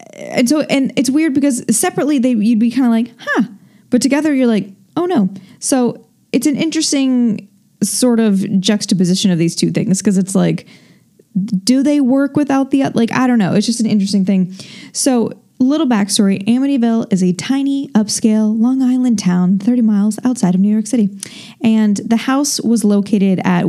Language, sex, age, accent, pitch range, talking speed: English, female, 10-29, American, 190-240 Hz, 180 wpm